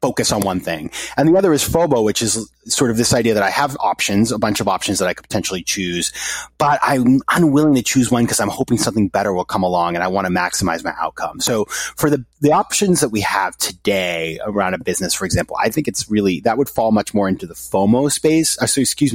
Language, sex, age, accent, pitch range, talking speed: English, male, 30-49, American, 95-140 Hz, 245 wpm